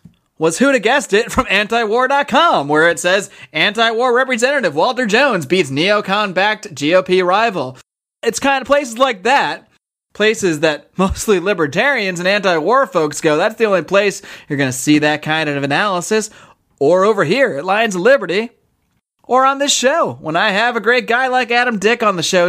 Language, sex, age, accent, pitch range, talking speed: English, male, 30-49, American, 175-245 Hz, 180 wpm